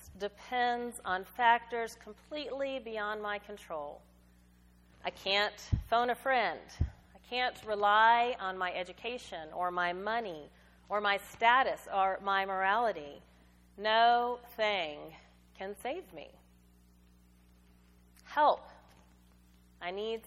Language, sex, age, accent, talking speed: English, female, 40-59, American, 105 wpm